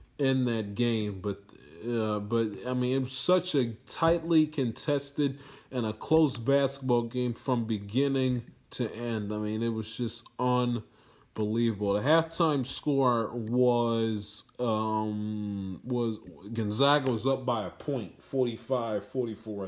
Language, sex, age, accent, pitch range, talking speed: English, male, 20-39, American, 120-145 Hz, 130 wpm